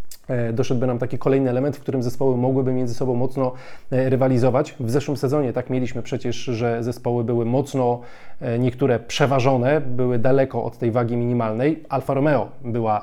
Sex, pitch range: male, 120-140 Hz